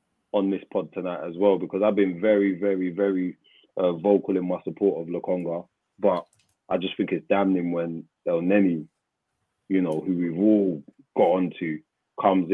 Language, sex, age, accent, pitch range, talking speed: English, male, 30-49, British, 85-100 Hz, 170 wpm